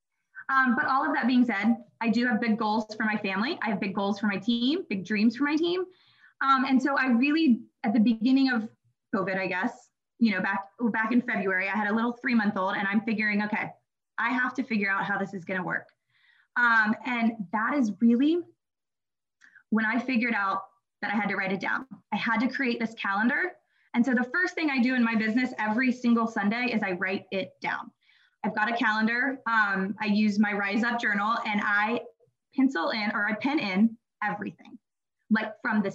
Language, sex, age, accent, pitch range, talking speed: English, female, 20-39, American, 210-255 Hz, 210 wpm